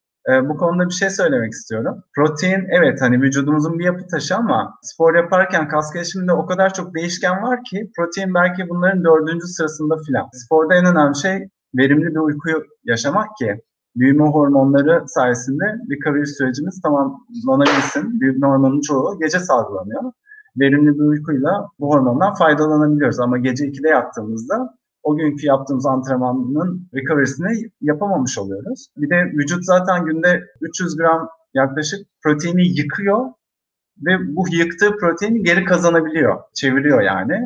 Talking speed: 140 wpm